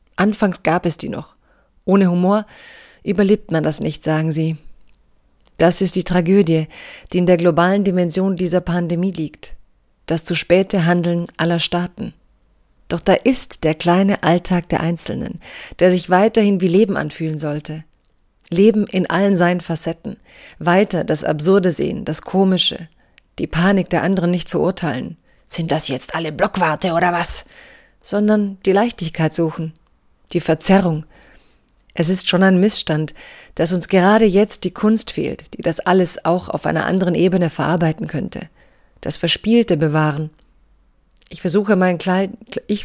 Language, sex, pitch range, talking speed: German, female, 165-195 Hz, 150 wpm